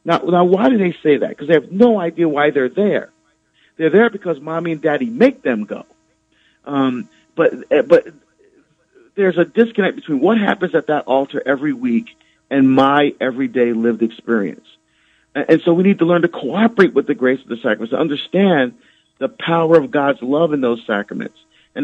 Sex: male